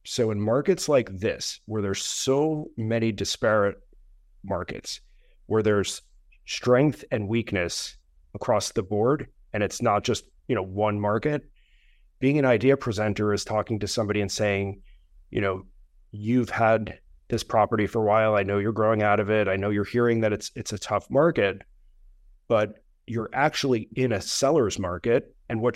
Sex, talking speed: male, 170 wpm